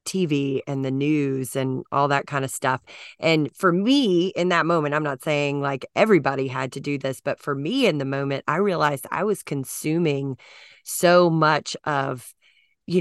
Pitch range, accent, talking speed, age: 145-185 Hz, American, 185 wpm, 30-49